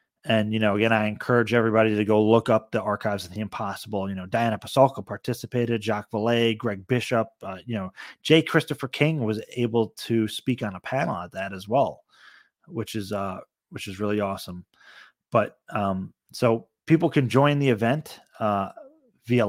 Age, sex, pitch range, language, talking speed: 30-49, male, 110-125 Hz, English, 180 wpm